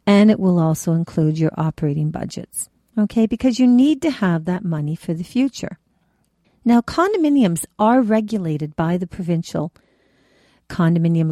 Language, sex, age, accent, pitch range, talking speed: English, female, 50-69, American, 160-230 Hz, 145 wpm